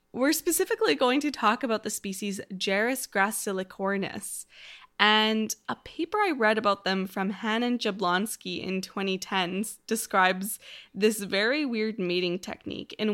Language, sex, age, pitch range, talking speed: English, female, 10-29, 195-255 Hz, 135 wpm